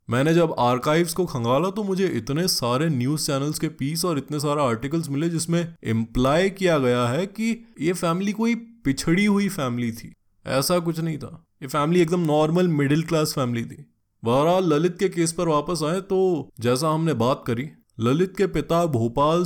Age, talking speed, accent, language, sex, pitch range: 20-39, 70 wpm, native, Hindi, male, 120-160 Hz